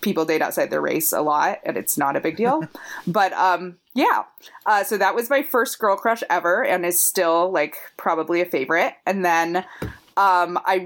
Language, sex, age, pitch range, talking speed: English, female, 20-39, 160-195 Hz, 200 wpm